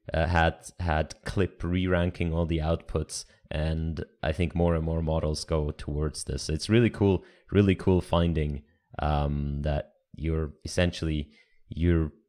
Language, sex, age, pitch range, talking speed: English, male, 30-49, 80-95 Hz, 140 wpm